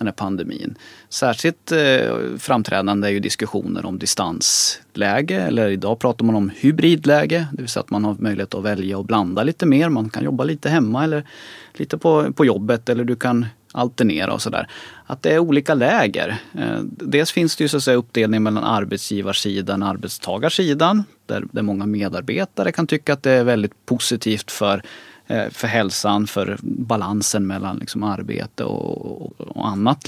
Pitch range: 105-140 Hz